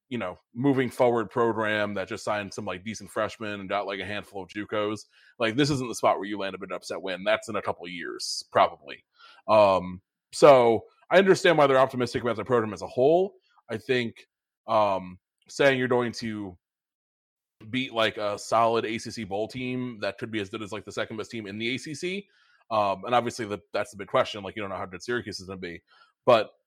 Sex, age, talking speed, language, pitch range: male, 20-39, 220 wpm, English, 105-130 Hz